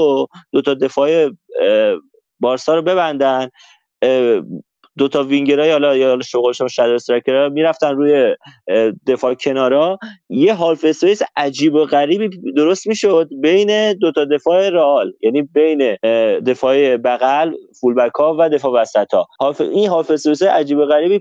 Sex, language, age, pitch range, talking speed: male, Persian, 30-49, 140-200 Hz, 135 wpm